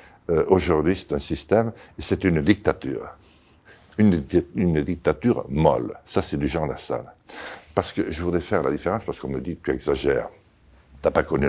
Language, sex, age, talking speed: French, male, 60-79, 180 wpm